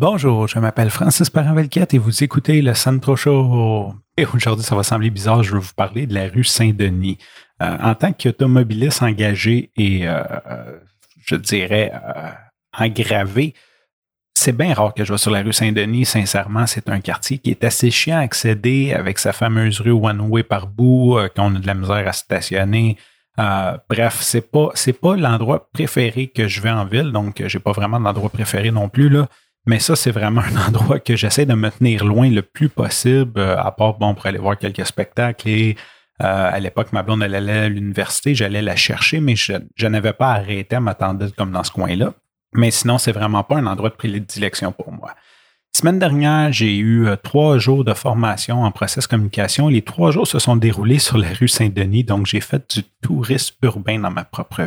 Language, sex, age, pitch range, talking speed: French, male, 30-49, 100-125 Hz, 200 wpm